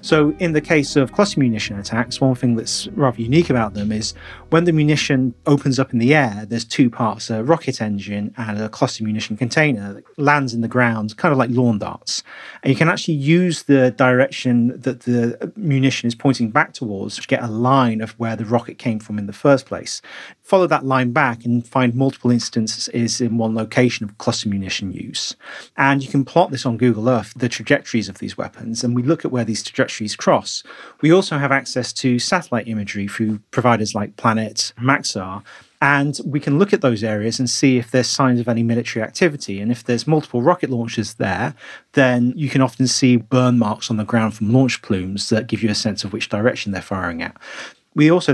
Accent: British